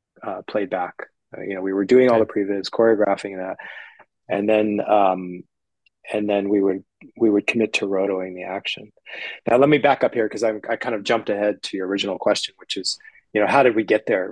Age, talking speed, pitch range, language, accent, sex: 30-49, 220 wpm, 95-115 Hz, English, American, male